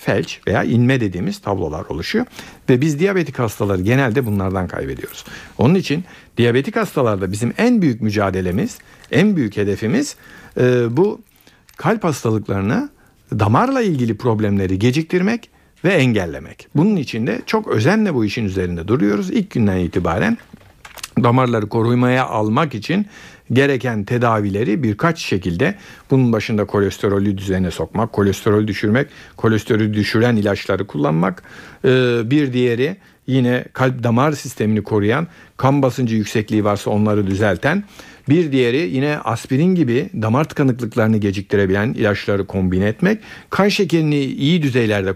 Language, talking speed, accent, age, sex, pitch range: Turkish, 125 wpm, native, 60-79, male, 105-145 Hz